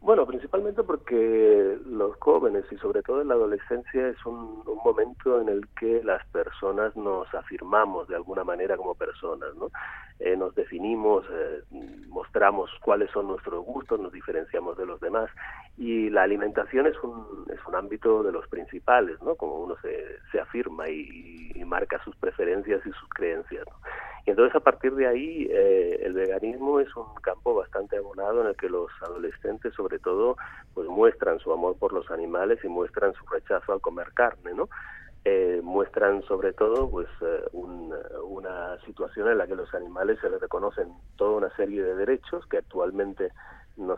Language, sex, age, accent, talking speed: Spanish, male, 40-59, Argentinian, 175 wpm